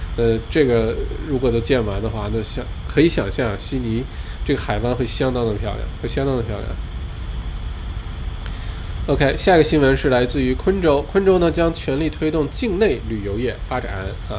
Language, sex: Chinese, male